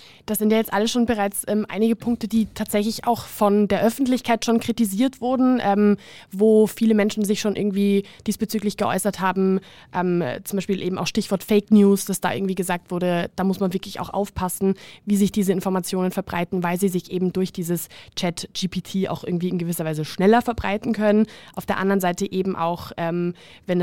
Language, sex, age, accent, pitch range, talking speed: German, female, 20-39, German, 185-215 Hz, 190 wpm